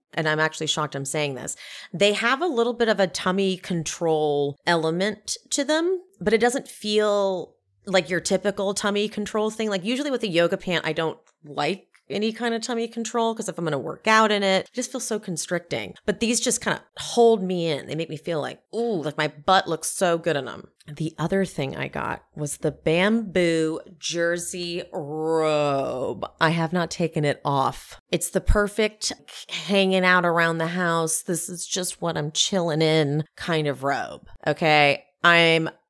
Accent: American